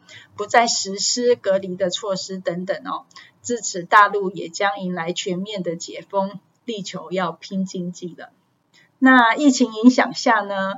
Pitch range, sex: 185-235 Hz, female